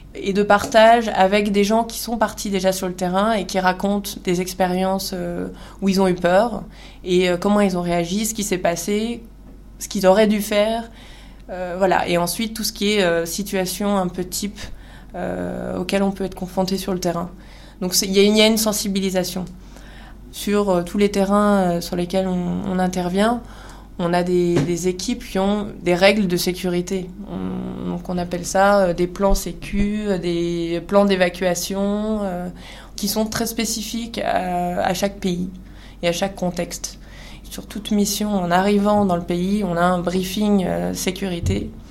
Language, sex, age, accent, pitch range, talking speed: French, female, 20-39, French, 180-205 Hz, 175 wpm